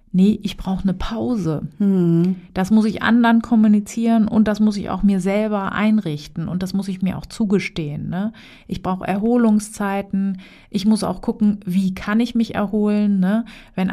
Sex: female